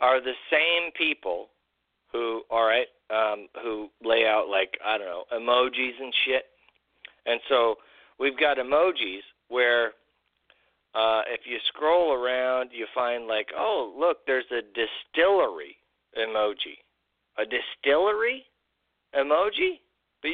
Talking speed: 125 wpm